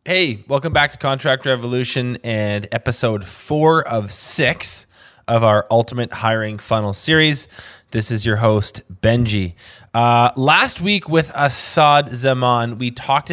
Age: 20-39